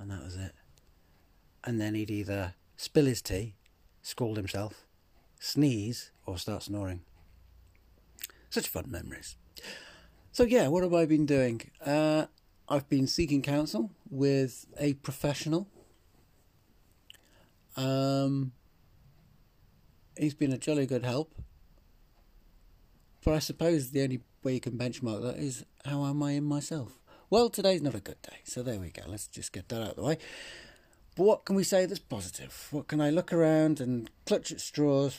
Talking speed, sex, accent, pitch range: 155 wpm, male, British, 100-150 Hz